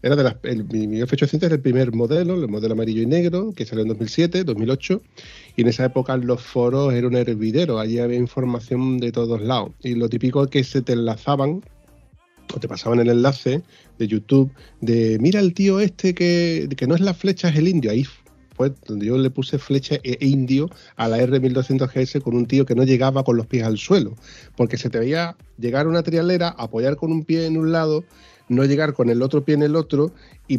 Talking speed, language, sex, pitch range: 215 wpm, Spanish, male, 120-170 Hz